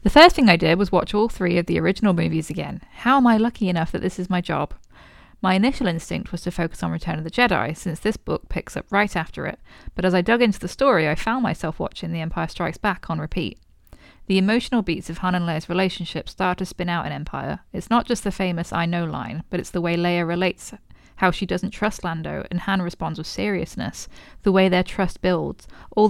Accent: British